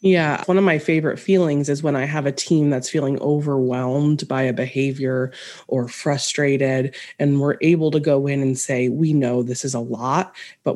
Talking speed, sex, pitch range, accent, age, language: 195 wpm, female, 130-160 Hz, American, 20-39, English